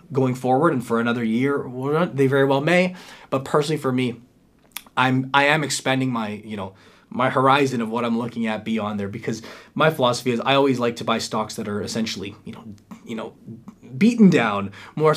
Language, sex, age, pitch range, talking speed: English, male, 20-39, 115-140 Hz, 200 wpm